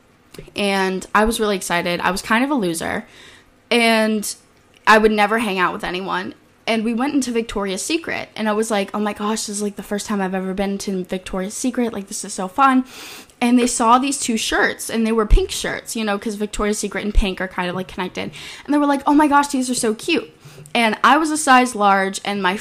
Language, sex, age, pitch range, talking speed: English, female, 10-29, 195-235 Hz, 240 wpm